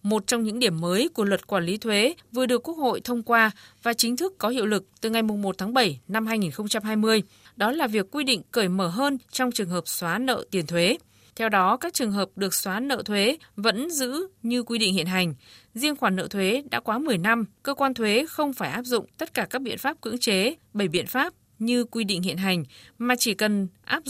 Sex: female